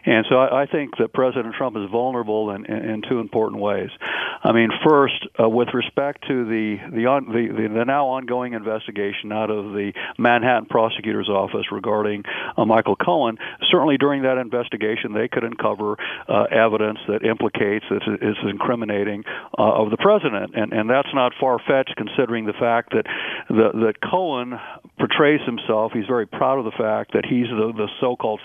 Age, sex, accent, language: 50-69, male, American, English